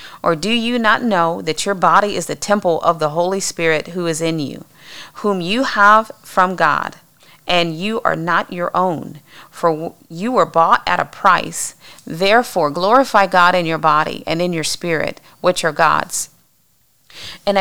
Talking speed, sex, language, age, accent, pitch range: 175 wpm, female, English, 40-59, American, 160-195 Hz